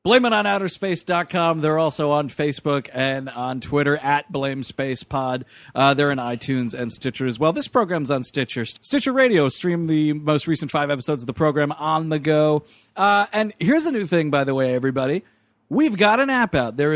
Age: 30-49